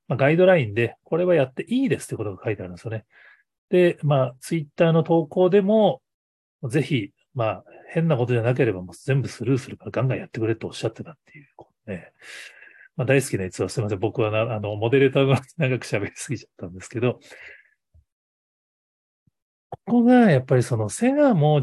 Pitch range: 105-165 Hz